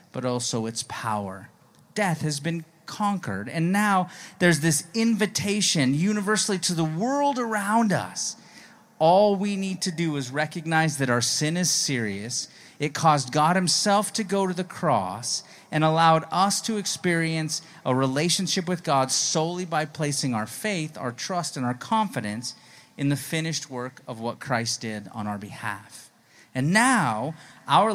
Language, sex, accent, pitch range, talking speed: English, male, American, 135-185 Hz, 155 wpm